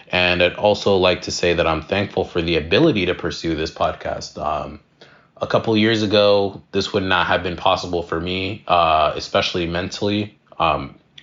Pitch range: 85-100 Hz